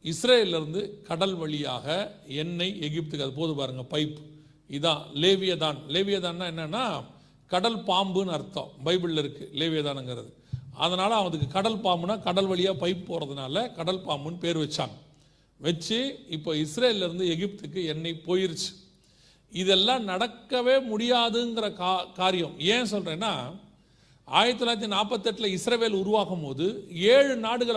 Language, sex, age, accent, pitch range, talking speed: Tamil, male, 40-59, native, 155-220 Hz, 110 wpm